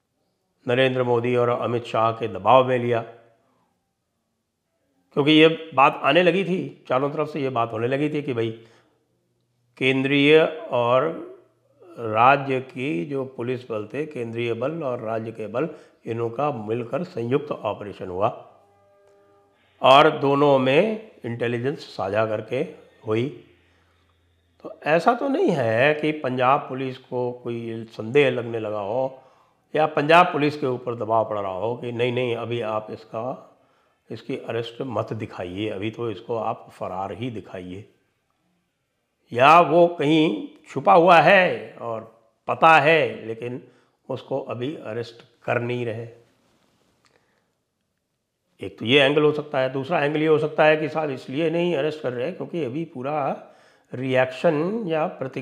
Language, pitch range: English, 115-150 Hz